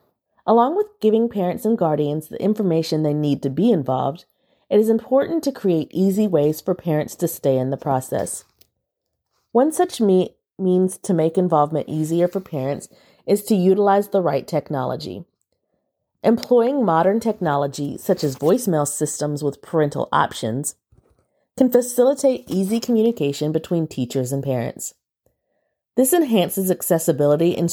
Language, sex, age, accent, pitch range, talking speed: English, female, 30-49, American, 145-225 Hz, 140 wpm